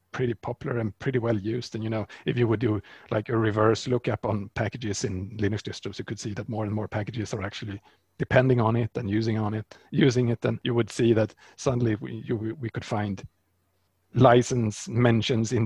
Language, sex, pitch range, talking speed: English, male, 105-125 Hz, 205 wpm